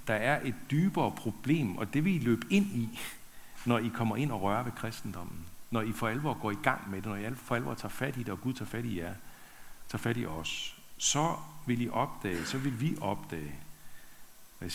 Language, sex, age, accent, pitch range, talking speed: Danish, male, 60-79, native, 100-125 Hz, 230 wpm